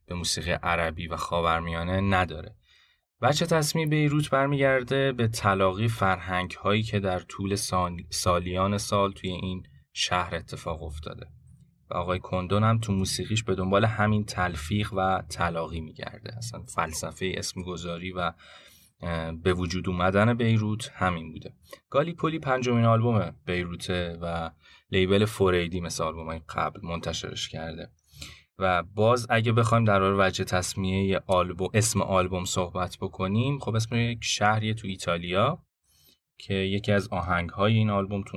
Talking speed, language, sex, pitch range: 130 wpm, Persian, male, 90-115 Hz